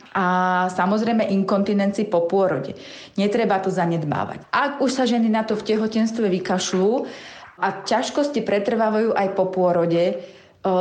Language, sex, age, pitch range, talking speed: Slovak, female, 30-49, 185-225 Hz, 135 wpm